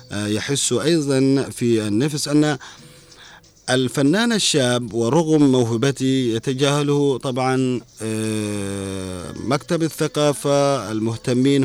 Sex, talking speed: male, 70 wpm